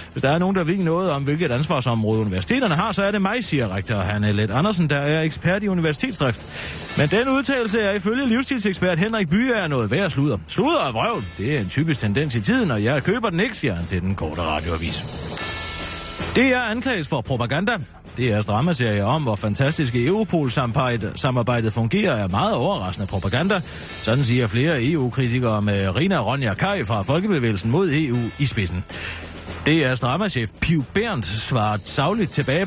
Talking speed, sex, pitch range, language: 180 wpm, male, 105-160 Hz, Danish